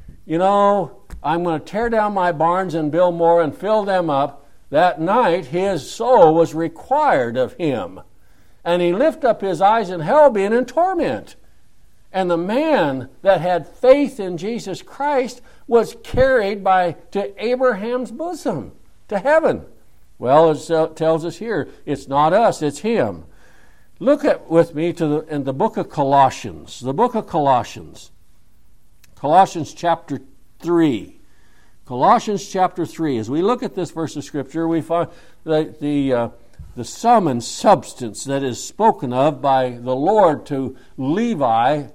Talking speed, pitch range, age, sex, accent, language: 155 wpm, 140-205 Hz, 60-79, male, American, English